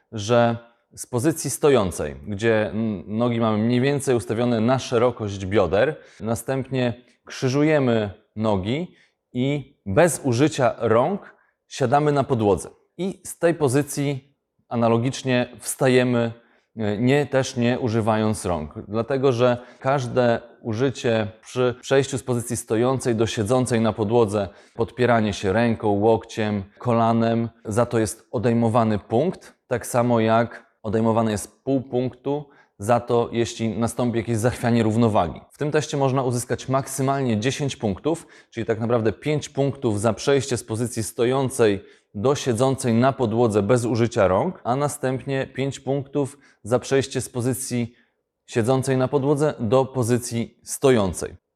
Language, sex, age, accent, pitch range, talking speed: Polish, male, 30-49, native, 115-135 Hz, 130 wpm